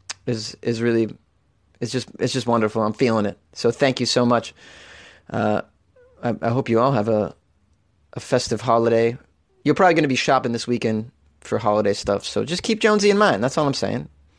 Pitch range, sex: 115-155 Hz, male